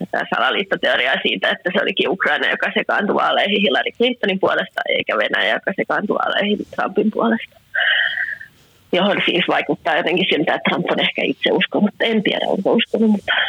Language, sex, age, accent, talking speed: Finnish, female, 20-39, native, 160 wpm